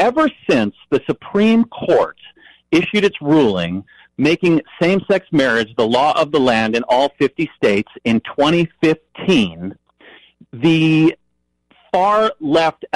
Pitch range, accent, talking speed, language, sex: 135-180 Hz, American, 110 wpm, English, male